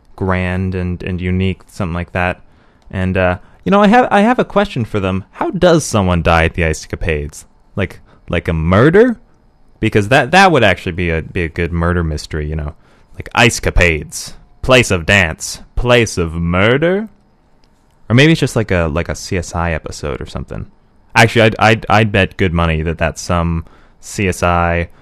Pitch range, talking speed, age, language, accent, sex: 85-110 Hz, 185 wpm, 20-39, English, American, male